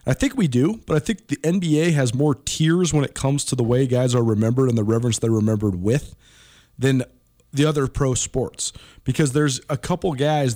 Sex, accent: male, American